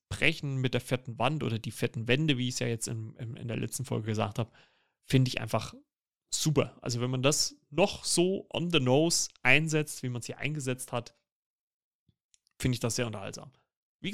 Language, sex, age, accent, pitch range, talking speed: German, male, 30-49, German, 120-145 Hz, 205 wpm